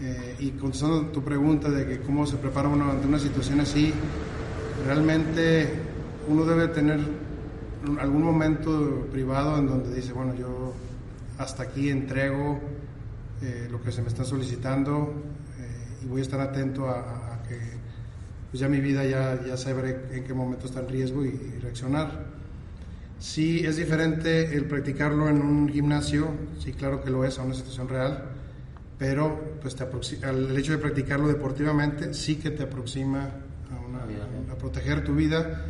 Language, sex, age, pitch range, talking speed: Spanish, male, 30-49, 125-145 Hz, 170 wpm